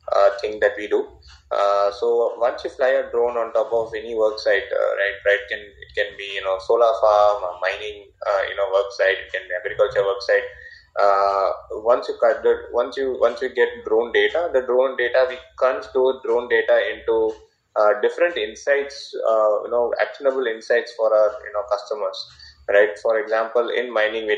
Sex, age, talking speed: male, 20-39, 195 wpm